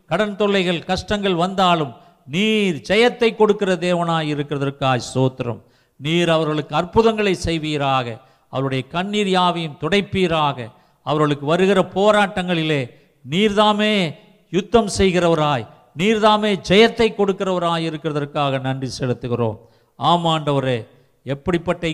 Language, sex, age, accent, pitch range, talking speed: Tamil, male, 50-69, native, 140-190 Hz, 90 wpm